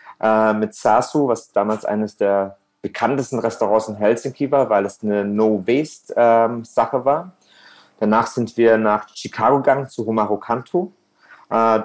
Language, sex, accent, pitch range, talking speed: German, male, German, 105-120 Hz, 135 wpm